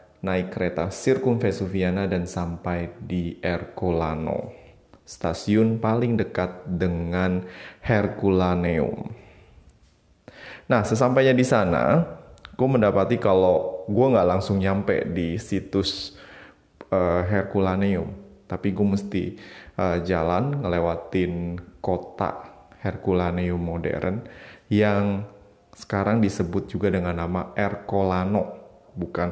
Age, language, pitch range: 20-39, Indonesian, 90-100 Hz